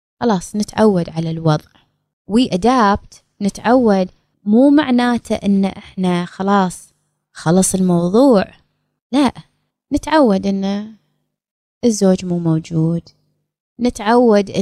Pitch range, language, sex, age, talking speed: 175-210 Hz, Arabic, female, 20-39, 80 wpm